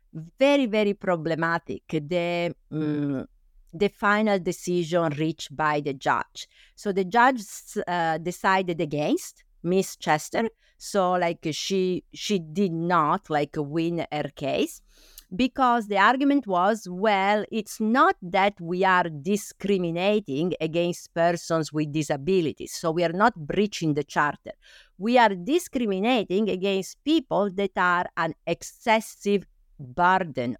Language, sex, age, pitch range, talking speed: English, female, 50-69, 165-220 Hz, 120 wpm